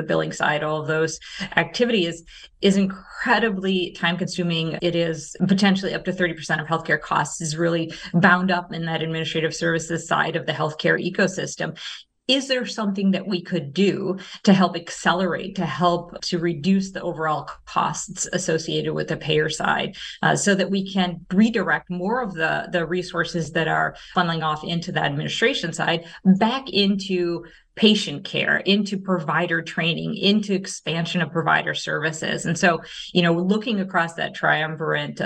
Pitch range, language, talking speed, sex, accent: 165-195 Hz, English, 160 wpm, female, American